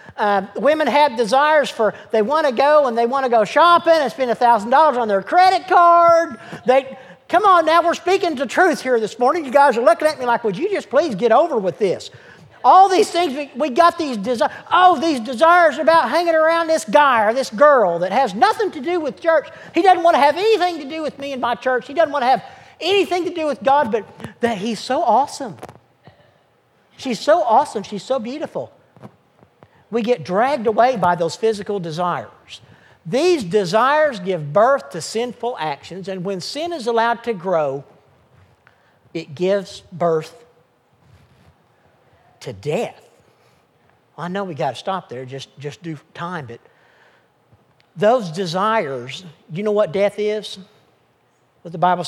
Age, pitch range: 50-69, 190-310 Hz